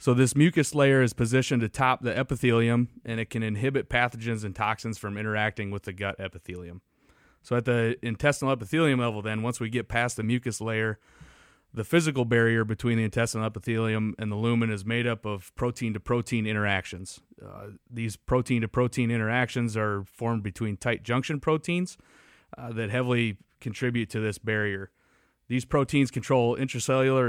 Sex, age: male, 30-49